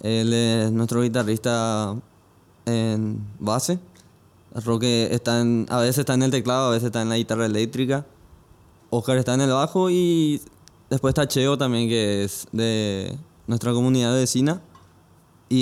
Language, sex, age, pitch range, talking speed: Spanish, male, 20-39, 105-130 Hz, 150 wpm